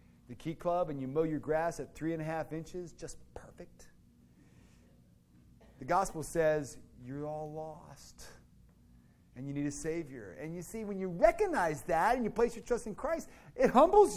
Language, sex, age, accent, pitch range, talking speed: English, male, 40-59, American, 155-200 Hz, 180 wpm